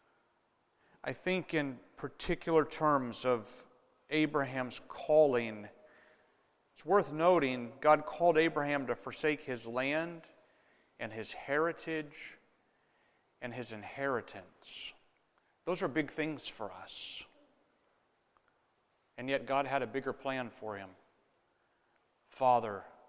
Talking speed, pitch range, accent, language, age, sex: 105 wpm, 115-145 Hz, American, English, 40-59, male